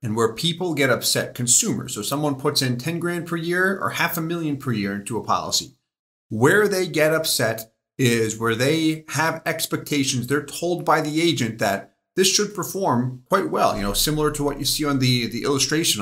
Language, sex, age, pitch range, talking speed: English, male, 40-59, 120-160 Hz, 200 wpm